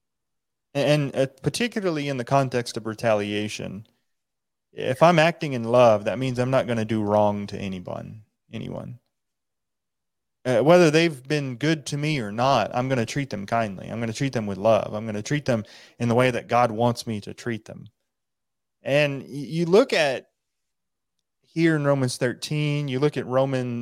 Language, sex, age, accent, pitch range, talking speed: English, male, 30-49, American, 115-145 Hz, 180 wpm